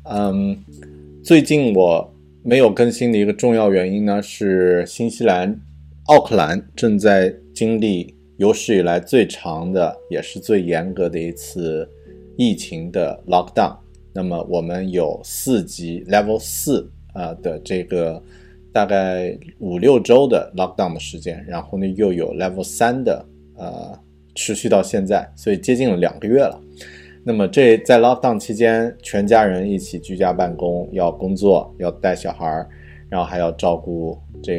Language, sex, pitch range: Chinese, male, 75-100 Hz